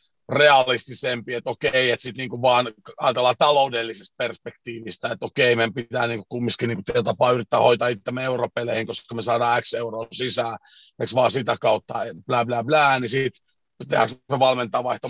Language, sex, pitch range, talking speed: Finnish, male, 120-155 Hz, 160 wpm